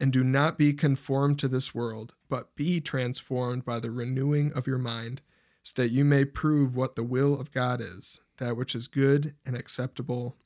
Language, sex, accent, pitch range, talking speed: English, male, American, 125-140 Hz, 195 wpm